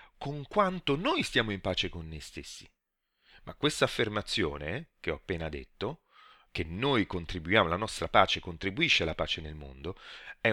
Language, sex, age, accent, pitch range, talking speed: Italian, male, 30-49, native, 85-115 Hz, 160 wpm